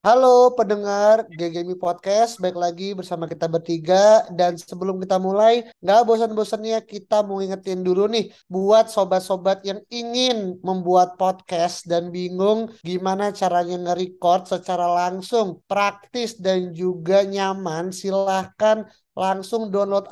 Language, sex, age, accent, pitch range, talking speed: Indonesian, male, 30-49, native, 180-215 Hz, 120 wpm